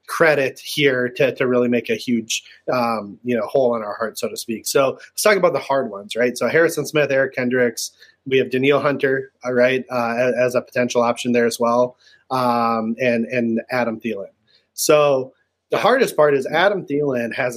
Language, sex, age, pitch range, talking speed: English, male, 30-49, 120-140 Hz, 200 wpm